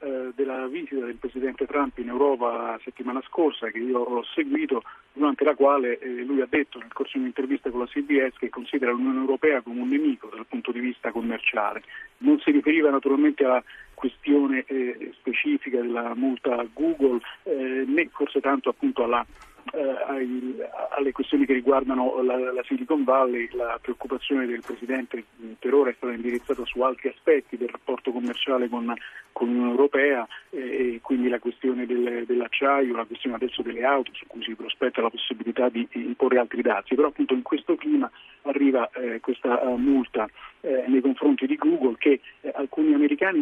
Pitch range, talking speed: 125-145 Hz, 160 wpm